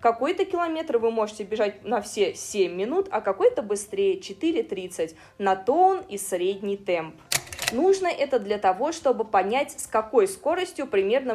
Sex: female